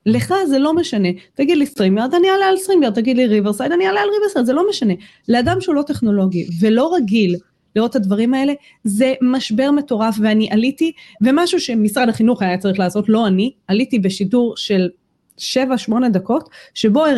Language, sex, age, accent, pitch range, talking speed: English, female, 20-39, Israeli, 195-260 Hz, 165 wpm